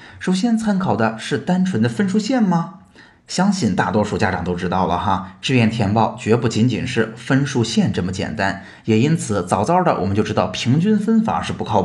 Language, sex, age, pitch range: Chinese, male, 20-39, 100-135 Hz